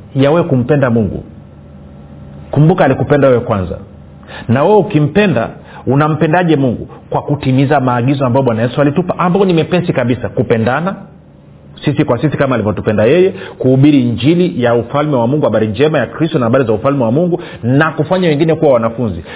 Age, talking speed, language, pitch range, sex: 40-59, 160 wpm, Swahili, 135-175 Hz, male